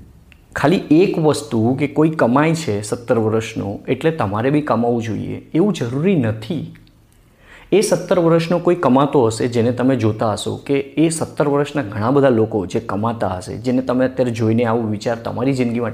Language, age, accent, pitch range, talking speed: Gujarati, 20-39, native, 110-140 Hz, 130 wpm